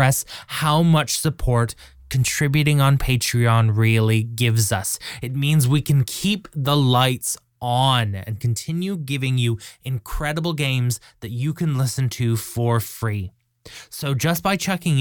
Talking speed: 135 wpm